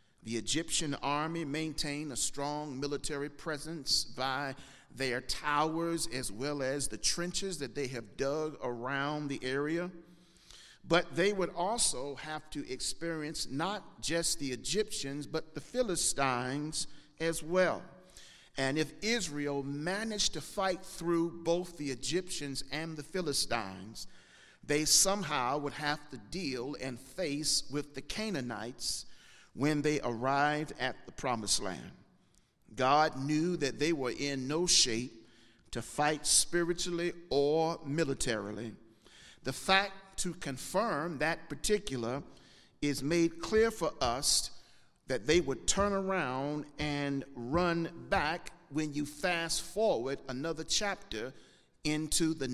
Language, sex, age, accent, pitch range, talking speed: English, male, 50-69, American, 135-165 Hz, 125 wpm